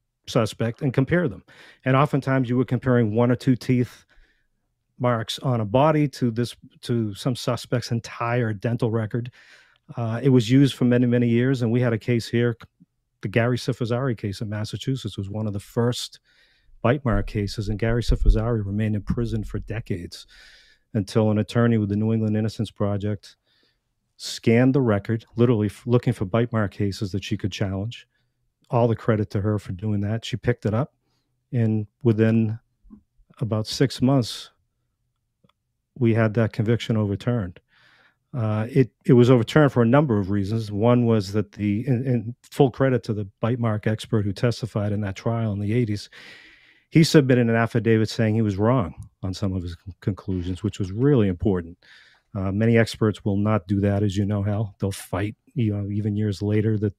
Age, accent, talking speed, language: 40-59, American, 180 wpm, English